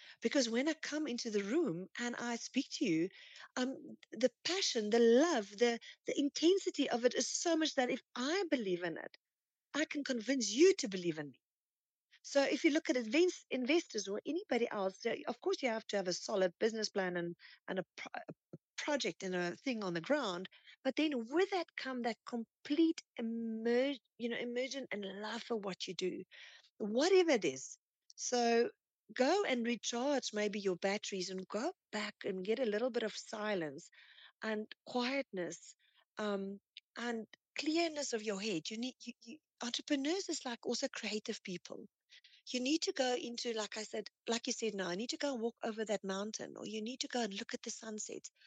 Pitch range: 215-290 Hz